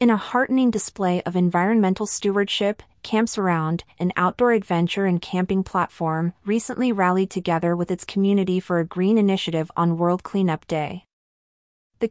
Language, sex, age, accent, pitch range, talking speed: English, female, 30-49, American, 170-205 Hz, 150 wpm